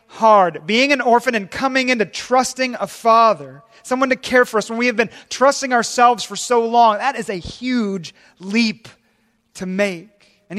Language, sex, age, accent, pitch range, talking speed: English, male, 30-49, American, 145-205 Hz, 180 wpm